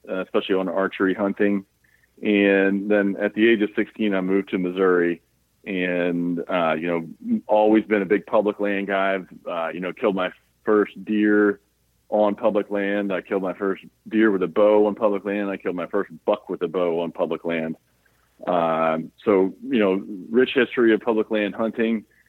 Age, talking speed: 40-59, 185 wpm